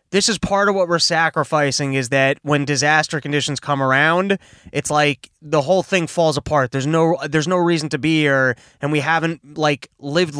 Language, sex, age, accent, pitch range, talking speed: English, male, 20-39, American, 145-185 Hz, 195 wpm